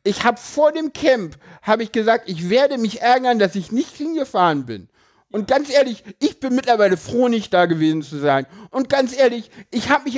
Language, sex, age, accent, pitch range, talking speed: German, male, 60-79, German, 200-280 Hz, 205 wpm